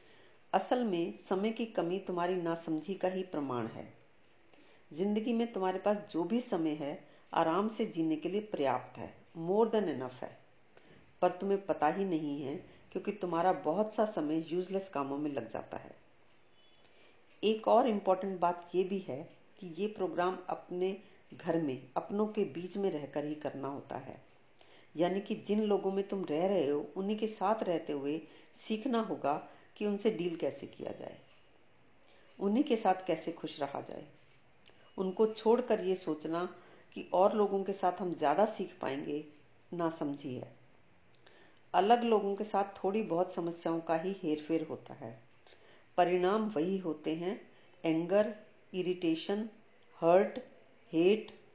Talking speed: 120 wpm